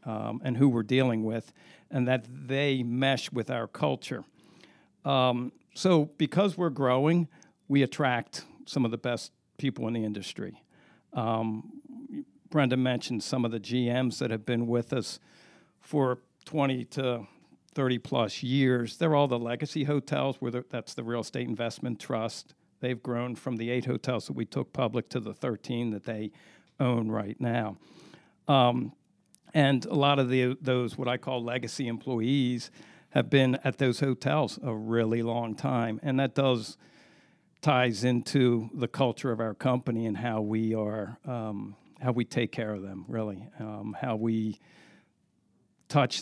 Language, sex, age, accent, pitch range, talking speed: English, male, 60-79, American, 115-140 Hz, 160 wpm